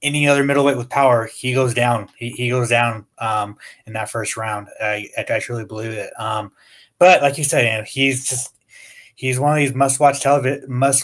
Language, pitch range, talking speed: English, 115-130 Hz, 210 wpm